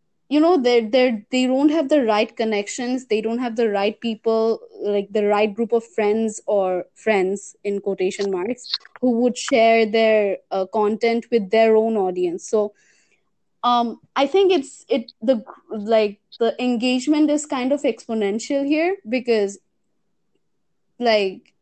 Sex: female